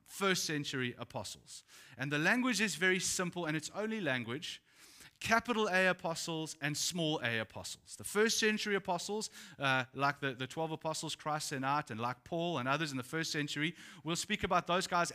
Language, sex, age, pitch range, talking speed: English, male, 30-49, 130-170 Hz, 185 wpm